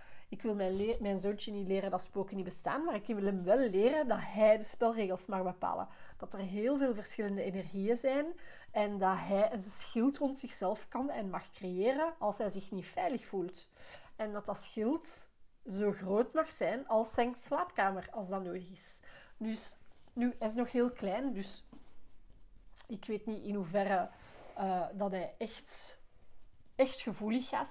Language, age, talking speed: Dutch, 30-49, 180 wpm